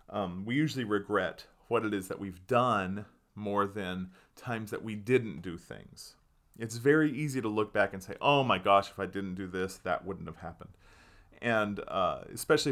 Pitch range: 95-145 Hz